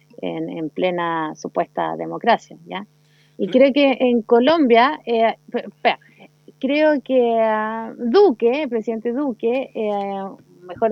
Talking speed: 105 wpm